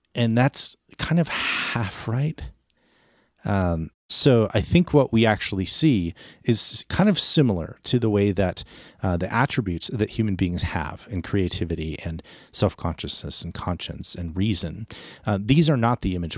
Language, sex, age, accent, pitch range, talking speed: English, male, 30-49, American, 90-120 Hz, 160 wpm